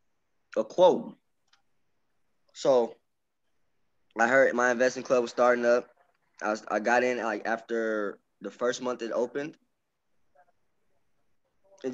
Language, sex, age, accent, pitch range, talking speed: English, male, 20-39, American, 115-135 Hz, 120 wpm